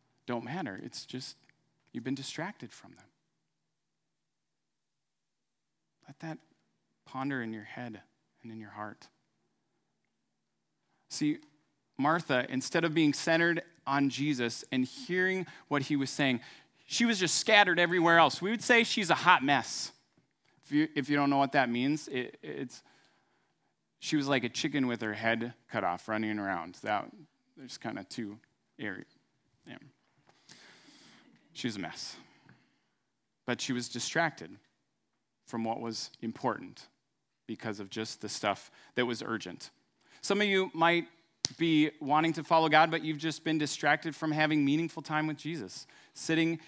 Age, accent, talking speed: 30-49, American, 150 wpm